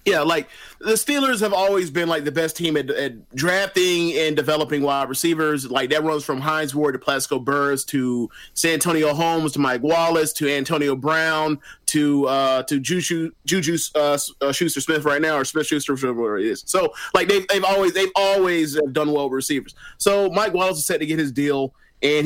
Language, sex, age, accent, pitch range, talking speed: English, male, 30-49, American, 140-165 Hz, 200 wpm